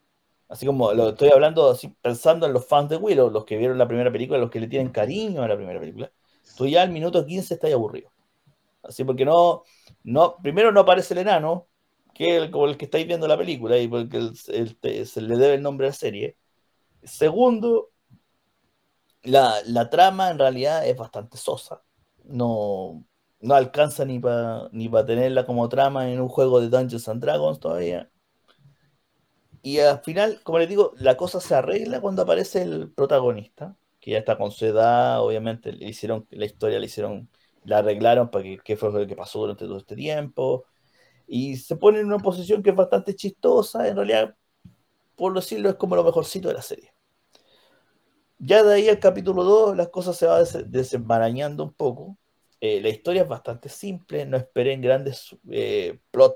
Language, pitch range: Spanish, 125-195 Hz